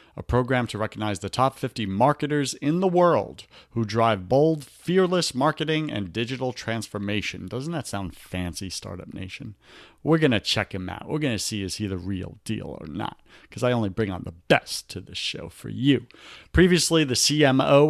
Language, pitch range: English, 100-145 Hz